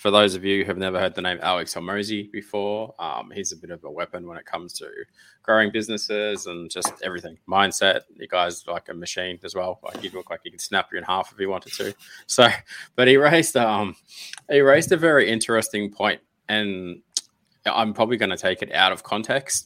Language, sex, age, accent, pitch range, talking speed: English, male, 20-39, Australian, 95-110 Hz, 220 wpm